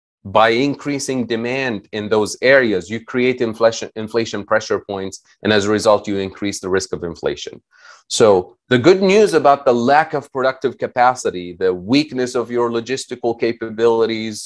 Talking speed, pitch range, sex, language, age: 160 wpm, 110-135 Hz, male, English, 30-49